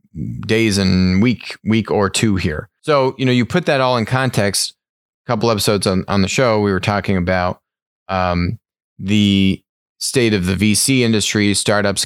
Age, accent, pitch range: 20-39, American, 95-110 Hz